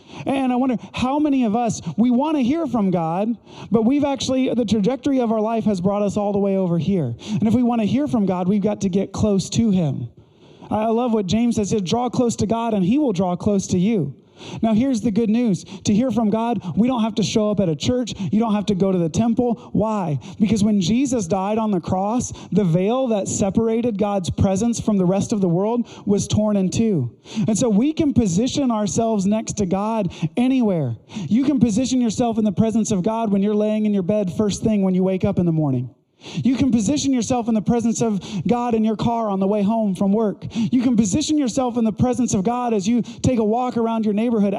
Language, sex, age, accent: English, male, 30-49, American